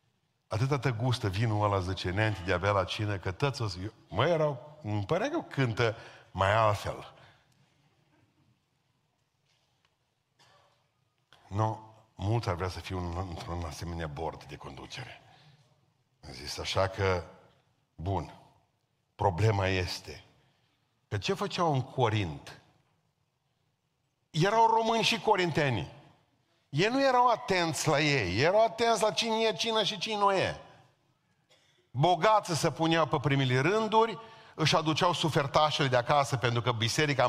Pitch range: 115-170 Hz